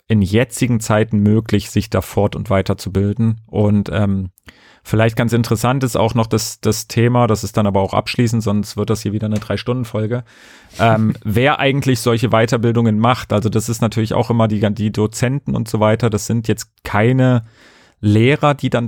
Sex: male